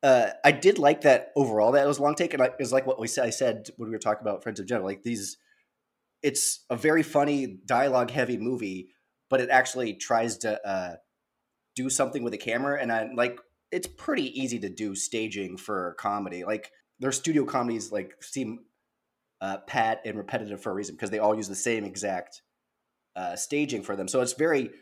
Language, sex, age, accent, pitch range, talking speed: English, male, 20-39, American, 110-135 Hz, 205 wpm